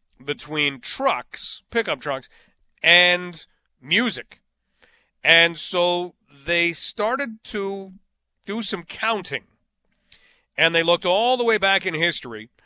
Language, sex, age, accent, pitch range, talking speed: English, male, 40-59, American, 160-220 Hz, 110 wpm